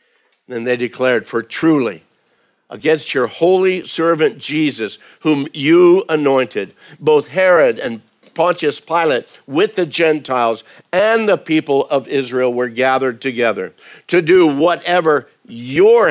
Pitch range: 115-155 Hz